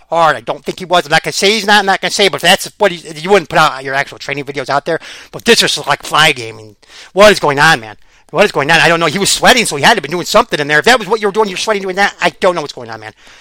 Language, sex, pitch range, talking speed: English, male, 145-195 Hz, 355 wpm